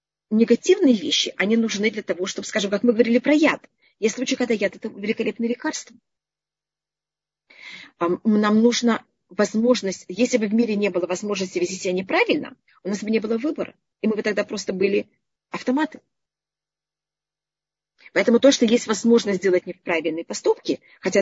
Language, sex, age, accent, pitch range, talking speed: Russian, female, 30-49, native, 195-250 Hz, 160 wpm